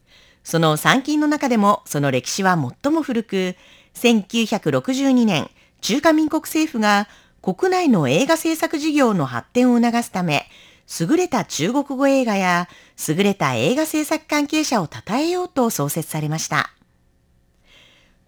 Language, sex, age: Japanese, female, 40-59